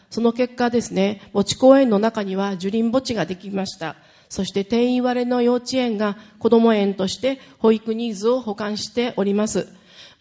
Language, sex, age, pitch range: Japanese, female, 40-59, 205-250 Hz